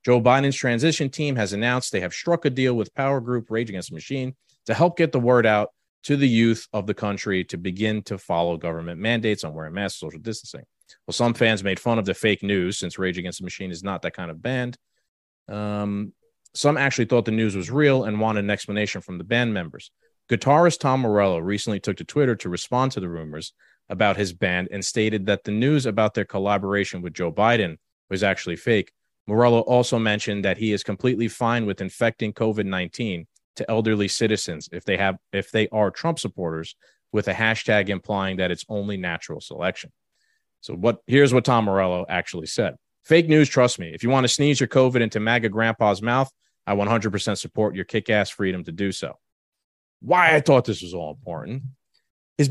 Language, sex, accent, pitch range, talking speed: English, male, American, 95-130 Hz, 205 wpm